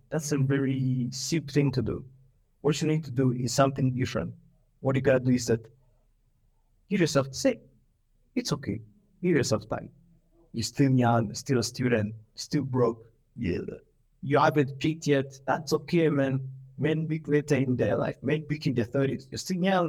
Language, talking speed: English, 175 wpm